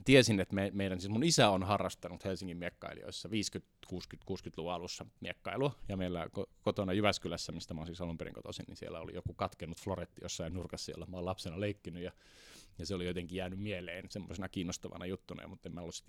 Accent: native